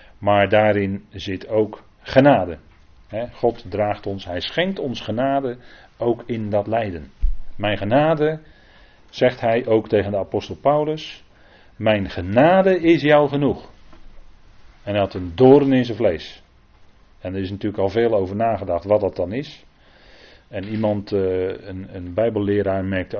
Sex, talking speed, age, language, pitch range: male, 140 wpm, 40-59, Dutch, 95-125 Hz